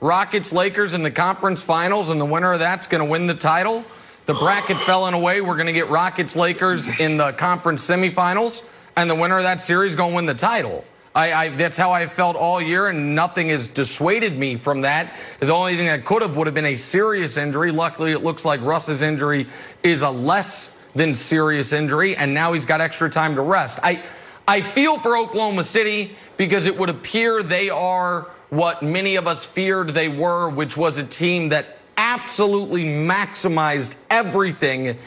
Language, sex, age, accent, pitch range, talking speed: English, male, 30-49, American, 155-190 Hz, 200 wpm